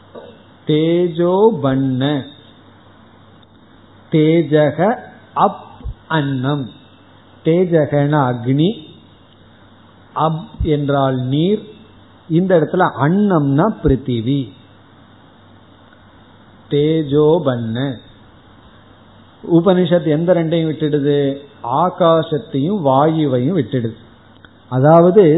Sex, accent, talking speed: male, native, 50 wpm